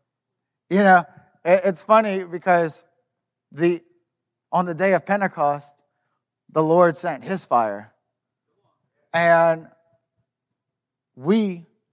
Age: 20-39